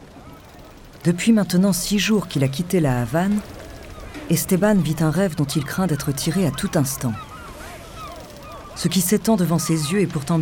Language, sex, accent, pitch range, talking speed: French, female, French, 135-185 Hz, 165 wpm